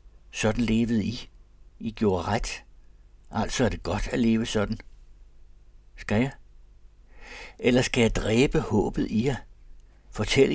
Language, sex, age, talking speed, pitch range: Danish, male, 60-79, 130 wpm, 85-115 Hz